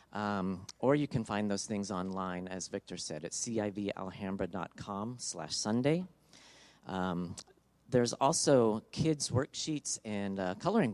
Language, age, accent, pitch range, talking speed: English, 40-59, American, 95-125 Hz, 115 wpm